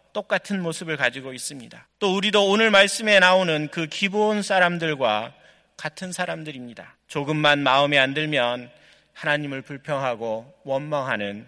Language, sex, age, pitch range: Korean, male, 40-59, 130-190 Hz